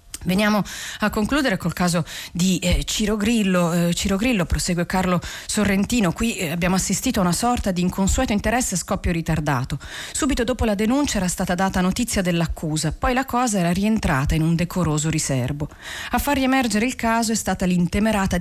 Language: Italian